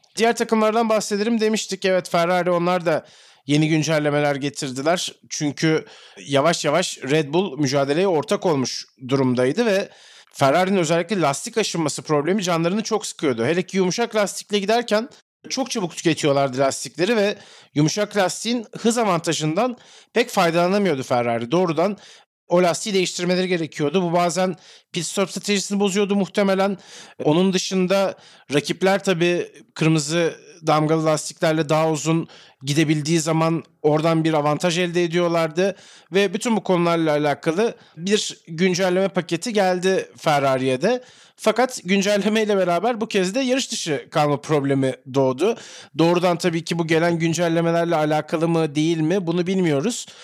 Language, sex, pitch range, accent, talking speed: Turkish, male, 155-200 Hz, native, 130 wpm